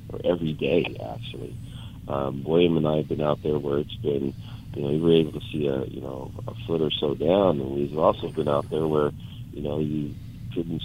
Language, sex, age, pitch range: English, male, 40-59, 75-105 Hz